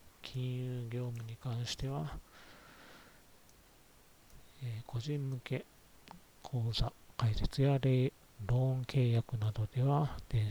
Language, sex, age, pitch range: Japanese, male, 40-59, 110-125 Hz